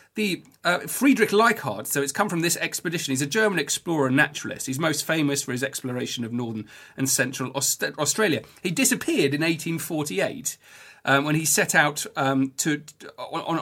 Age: 40-59